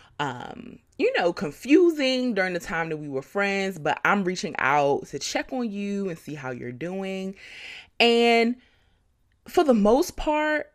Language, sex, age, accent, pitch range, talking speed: English, female, 20-39, American, 150-230 Hz, 160 wpm